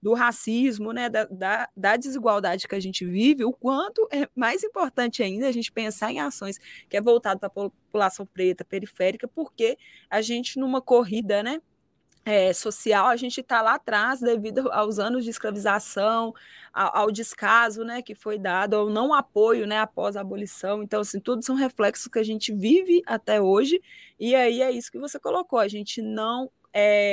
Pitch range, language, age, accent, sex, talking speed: 195-250 Hz, Portuguese, 20-39, Brazilian, female, 185 wpm